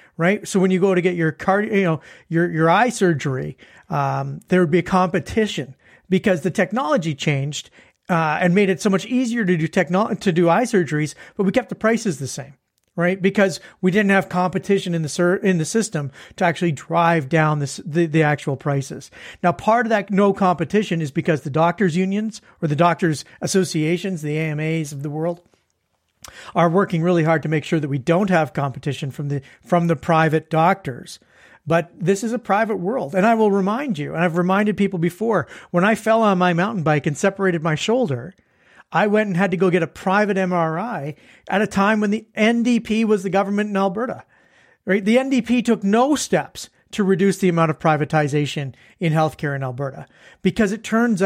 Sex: male